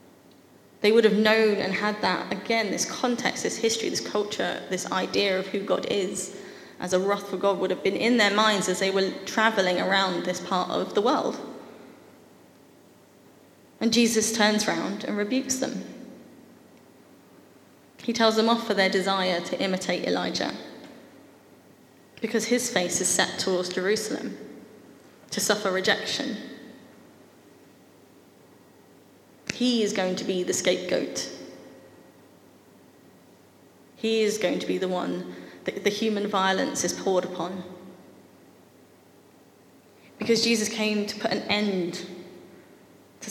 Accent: British